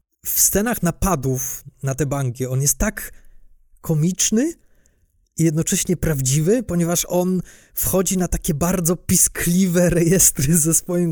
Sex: male